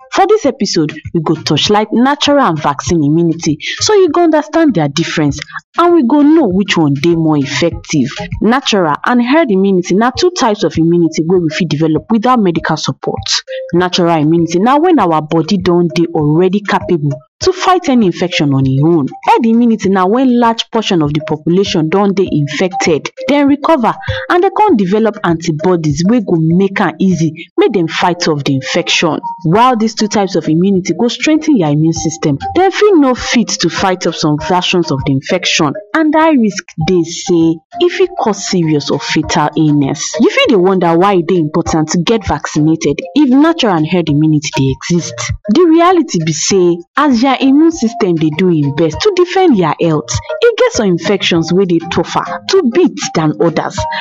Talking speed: 190 wpm